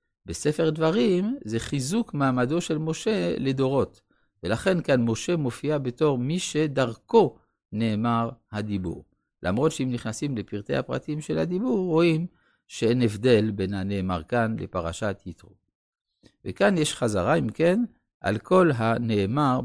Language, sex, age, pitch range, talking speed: Hebrew, male, 50-69, 105-150 Hz, 120 wpm